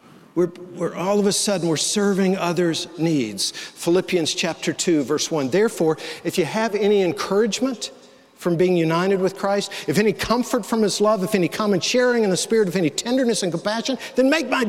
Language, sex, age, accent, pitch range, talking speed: English, male, 50-69, American, 160-225 Hz, 190 wpm